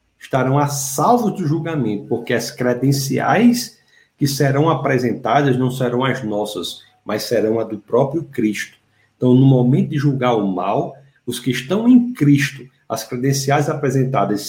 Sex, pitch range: male, 120-155 Hz